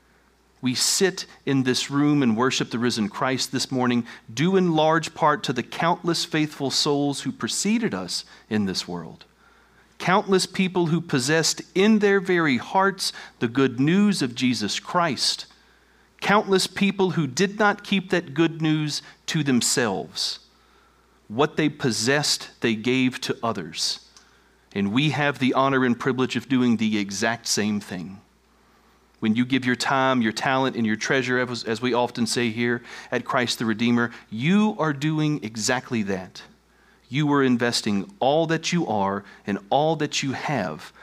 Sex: male